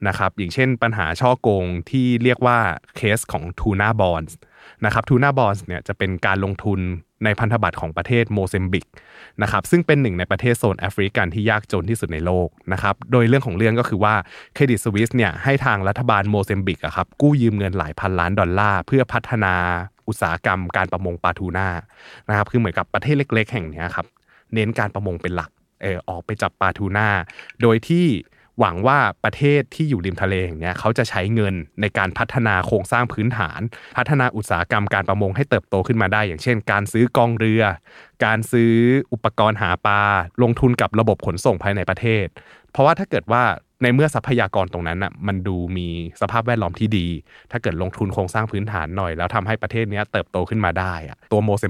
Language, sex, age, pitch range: Thai, male, 20-39, 95-115 Hz